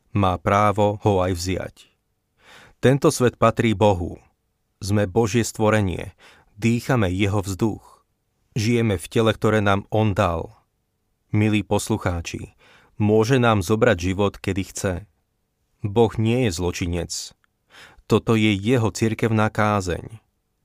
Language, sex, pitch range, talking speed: Slovak, male, 95-110 Hz, 115 wpm